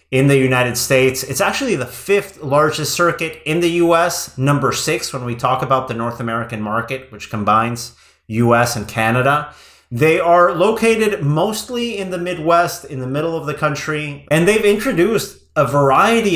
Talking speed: 170 wpm